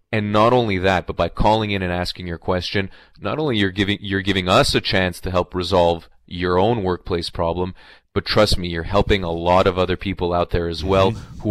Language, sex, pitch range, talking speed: English, male, 90-100 Hz, 225 wpm